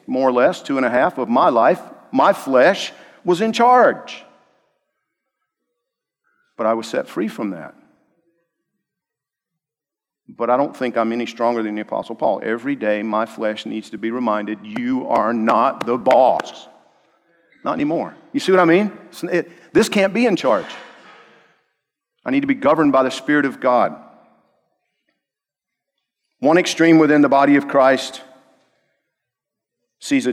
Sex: male